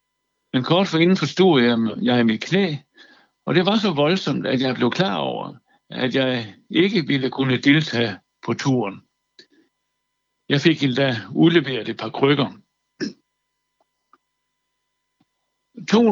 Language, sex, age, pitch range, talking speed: Danish, male, 60-79, 125-165 Hz, 135 wpm